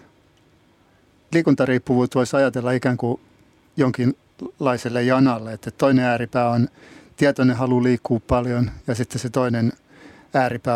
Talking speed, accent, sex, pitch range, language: 110 wpm, native, male, 115-130 Hz, Finnish